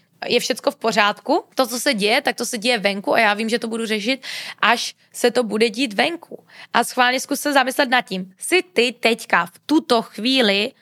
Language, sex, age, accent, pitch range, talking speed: Czech, female, 20-39, native, 210-265 Hz, 215 wpm